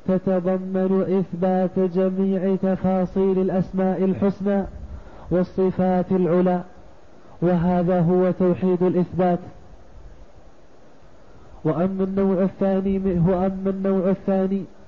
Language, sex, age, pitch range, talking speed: Arabic, male, 30-49, 185-195 Hz, 65 wpm